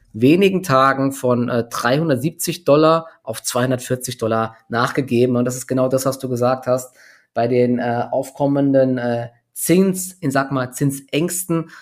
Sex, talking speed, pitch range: male, 145 wpm, 120-135 Hz